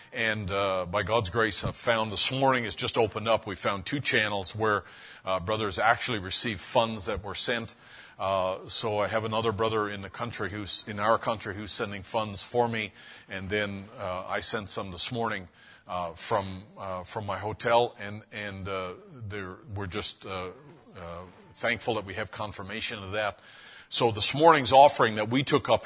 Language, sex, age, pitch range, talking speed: English, male, 50-69, 100-110 Hz, 185 wpm